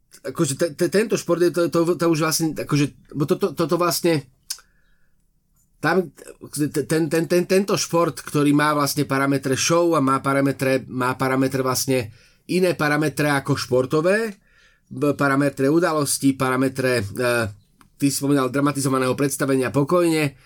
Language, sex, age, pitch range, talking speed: Slovak, male, 30-49, 135-165 Hz, 95 wpm